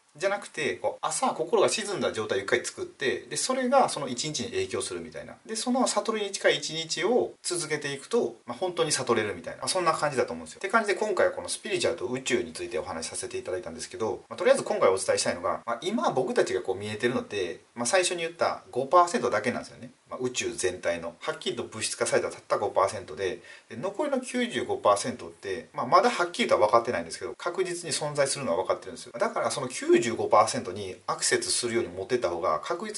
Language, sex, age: Japanese, male, 30-49